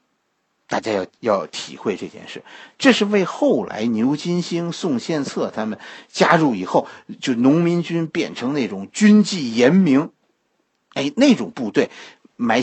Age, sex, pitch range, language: 50-69, male, 155-245 Hz, Chinese